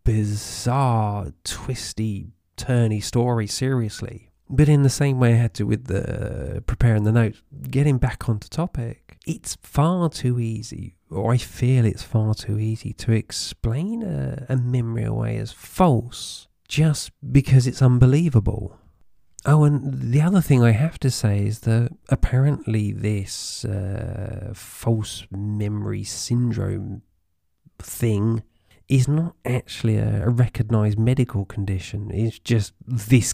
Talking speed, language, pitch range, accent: 135 wpm, English, 105-130 Hz, British